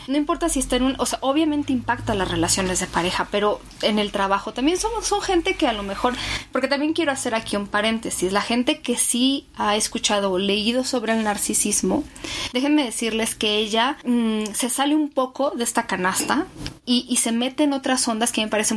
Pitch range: 205-260 Hz